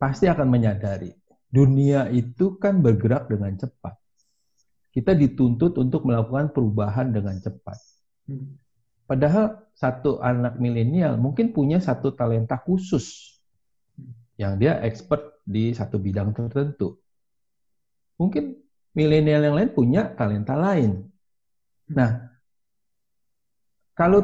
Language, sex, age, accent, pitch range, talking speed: Indonesian, male, 50-69, native, 110-150 Hz, 100 wpm